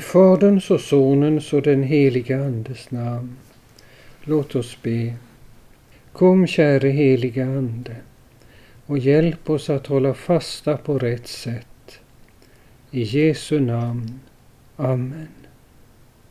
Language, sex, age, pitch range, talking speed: Swedish, male, 50-69, 125-165 Hz, 105 wpm